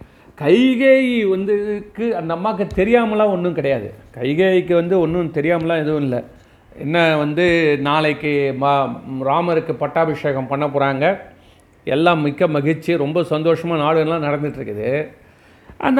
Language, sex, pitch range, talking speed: Tamil, male, 155-210 Hz, 110 wpm